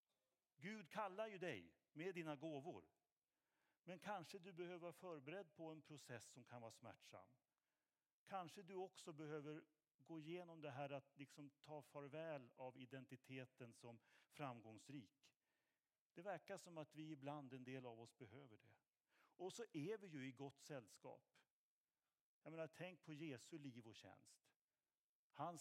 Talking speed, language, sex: 150 wpm, Swedish, male